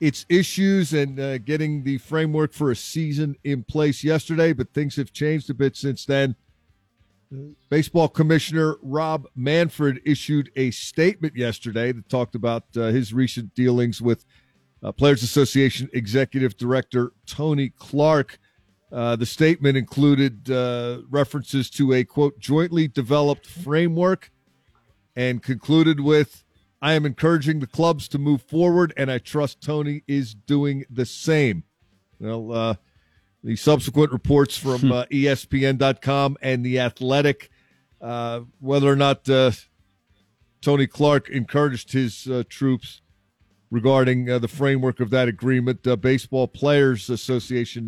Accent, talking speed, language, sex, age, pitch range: American, 135 wpm, English, male, 50-69, 120-145 Hz